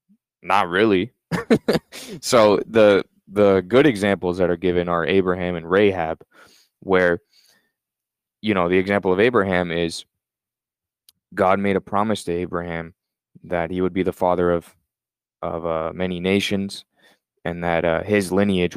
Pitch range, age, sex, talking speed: 90-100 Hz, 20-39, male, 140 wpm